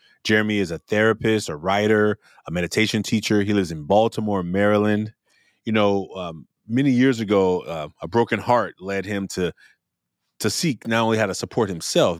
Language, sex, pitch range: English, male, 95-115 Hz